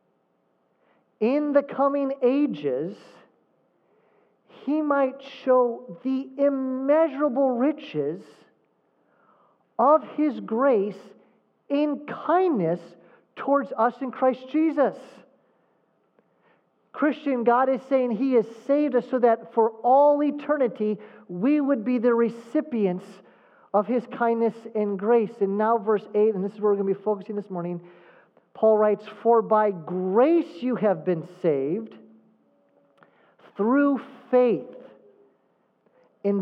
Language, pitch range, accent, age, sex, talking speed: English, 200-275 Hz, American, 40-59, male, 115 wpm